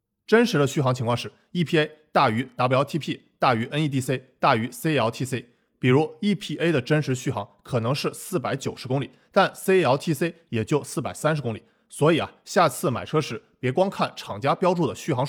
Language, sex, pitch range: Chinese, male, 125-175 Hz